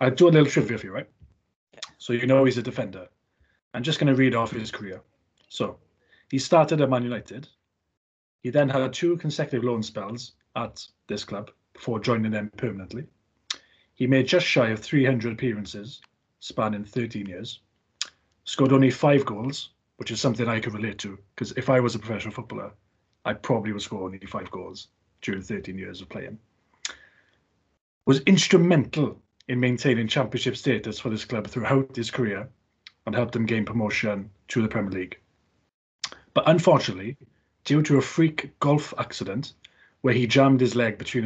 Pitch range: 105-130 Hz